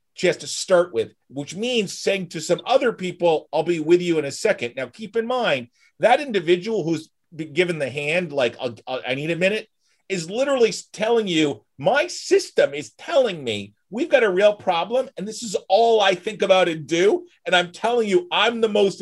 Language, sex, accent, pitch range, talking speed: English, male, American, 145-210 Hz, 200 wpm